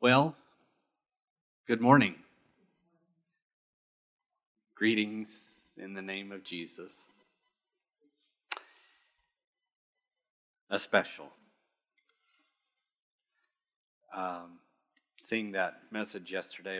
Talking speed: 55 wpm